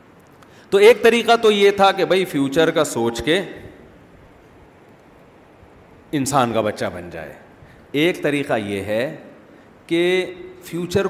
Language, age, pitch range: Urdu, 40-59, 150-205 Hz